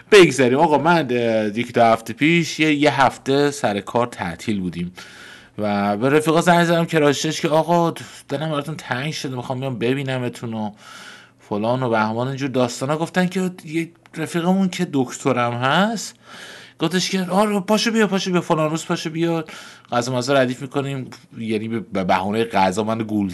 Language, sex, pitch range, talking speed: Persian, male, 105-150 Hz, 155 wpm